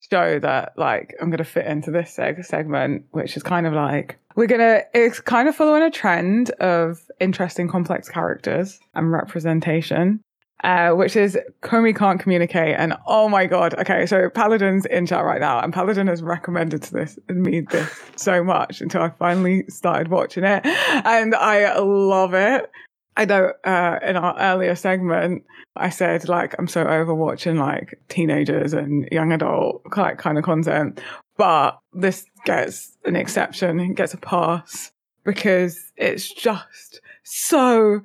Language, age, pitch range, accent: English, 20-39, 170-215 Hz, British